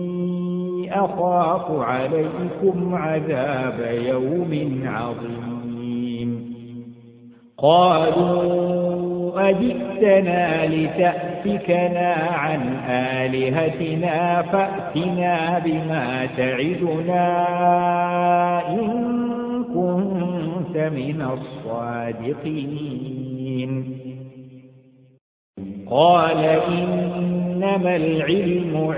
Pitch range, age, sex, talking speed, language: 130-175 Hz, 60-79, male, 40 wpm, Arabic